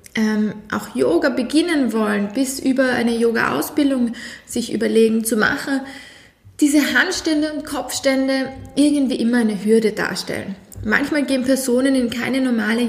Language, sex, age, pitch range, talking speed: German, female, 20-39, 225-270 Hz, 130 wpm